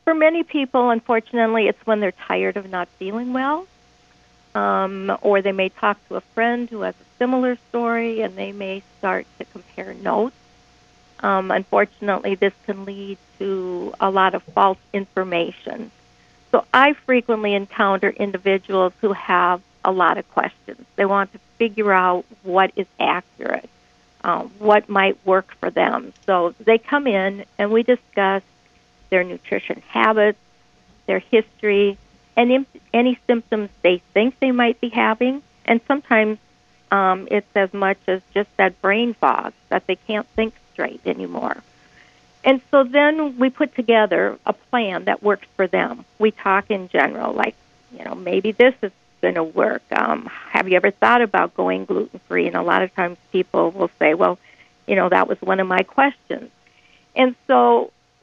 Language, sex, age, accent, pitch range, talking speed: English, female, 50-69, American, 190-235 Hz, 160 wpm